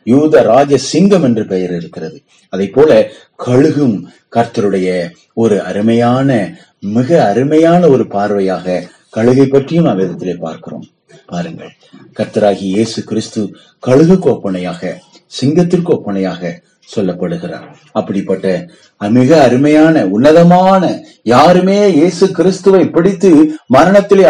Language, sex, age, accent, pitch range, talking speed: Tamil, male, 30-49, native, 105-175 Hz, 90 wpm